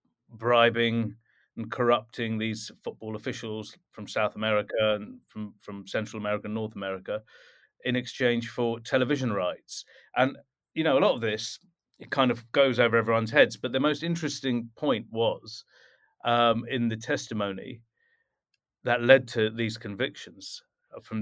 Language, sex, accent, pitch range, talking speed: English, male, British, 110-125 Hz, 145 wpm